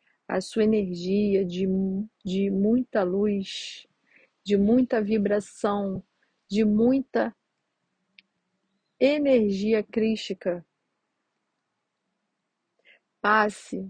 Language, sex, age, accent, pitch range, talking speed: Portuguese, female, 40-59, Brazilian, 190-225 Hz, 65 wpm